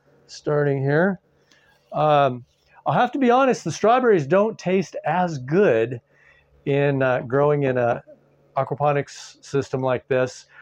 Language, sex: English, male